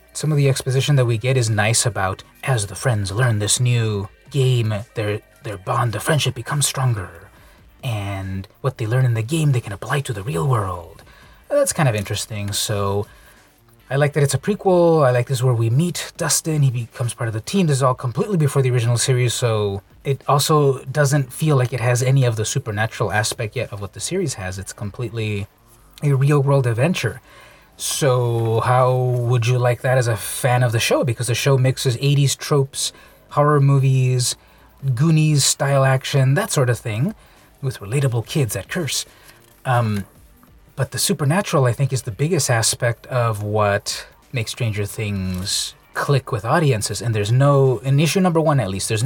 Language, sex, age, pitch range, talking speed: English, male, 20-39, 110-140 Hz, 190 wpm